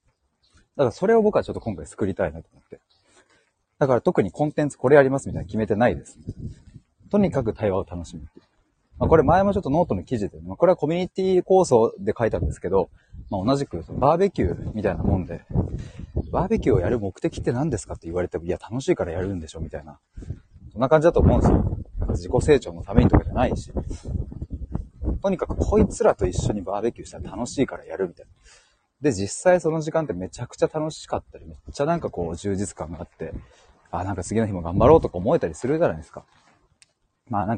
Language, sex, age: Japanese, male, 30-49